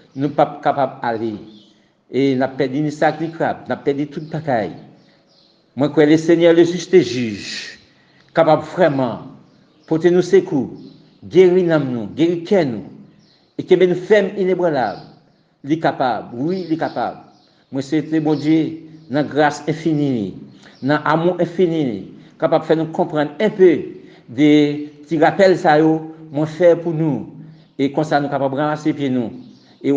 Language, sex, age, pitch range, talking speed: French, male, 60-79, 135-170 Hz, 160 wpm